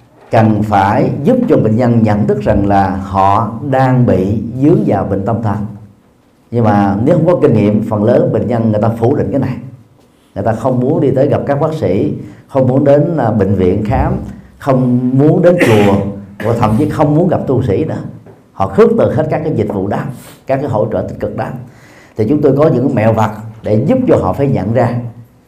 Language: Vietnamese